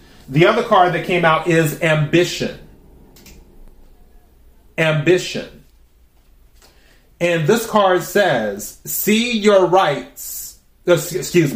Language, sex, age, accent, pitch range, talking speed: English, male, 30-49, American, 140-185 Hz, 90 wpm